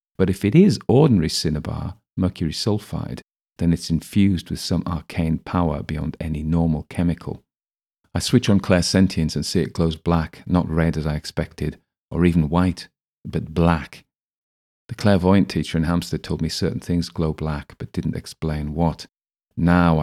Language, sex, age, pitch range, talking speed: English, male, 40-59, 80-90 Hz, 160 wpm